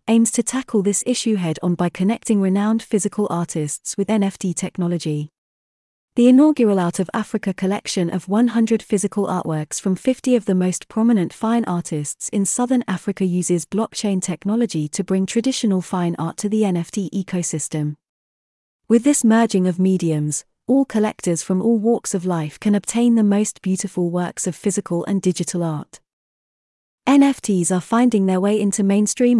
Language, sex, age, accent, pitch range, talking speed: English, female, 30-49, British, 175-220 Hz, 155 wpm